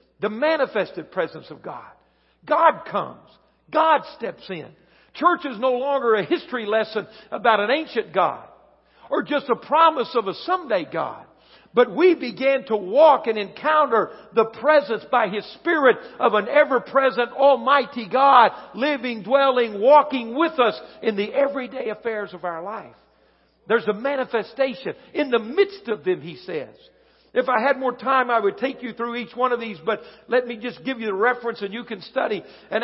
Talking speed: 175 wpm